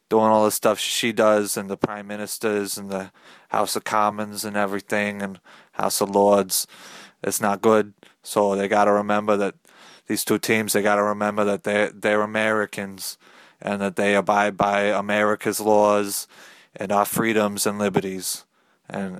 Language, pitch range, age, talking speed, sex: English, 100-110 Hz, 20-39, 170 wpm, male